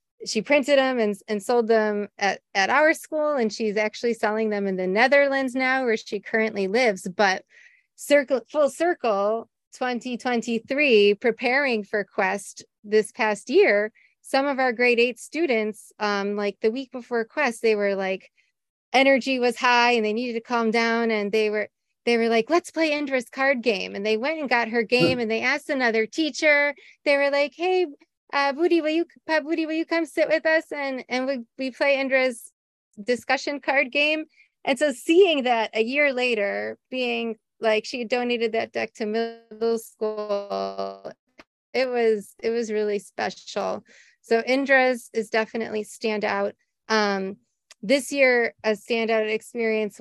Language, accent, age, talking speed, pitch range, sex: English, American, 30-49, 170 wpm, 215-270 Hz, female